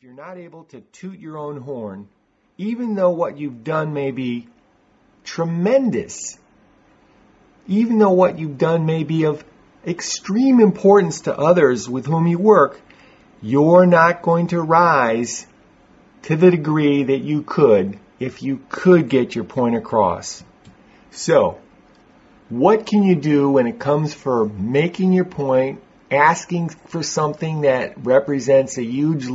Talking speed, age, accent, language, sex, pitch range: 145 wpm, 50-69, American, English, male, 130-170 Hz